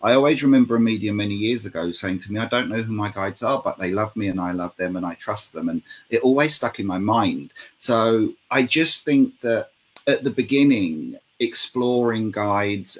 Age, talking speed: 30-49, 215 wpm